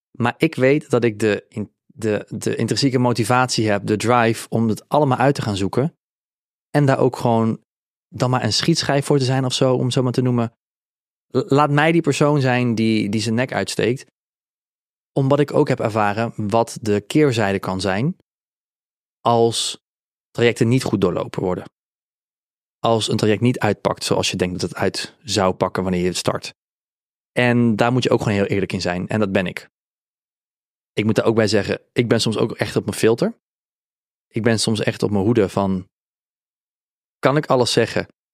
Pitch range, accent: 105-130 Hz, Dutch